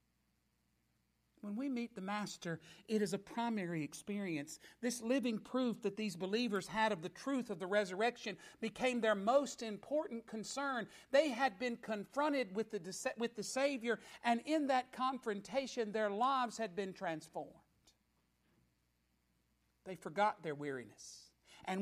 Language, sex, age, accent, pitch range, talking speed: English, male, 50-69, American, 165-215 Hz, 140 wpm